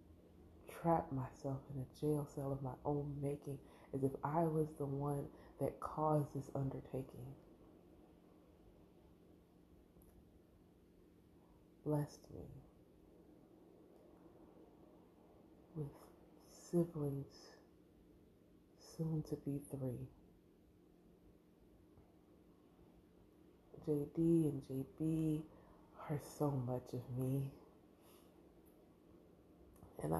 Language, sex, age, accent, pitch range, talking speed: English, female, 30-49, American, 125-160 Hz, 75 wpm